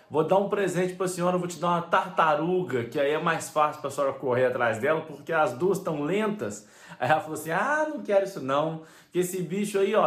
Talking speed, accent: 250 wpm, Brazilian